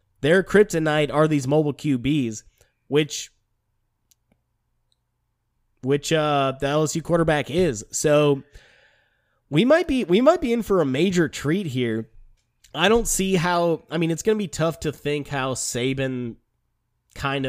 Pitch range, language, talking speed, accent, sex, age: 130-155 Hz, English, 145 wpm, American, male, 20-39